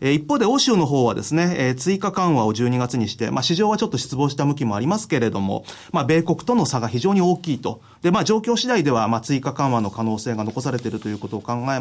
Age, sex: 30-49, male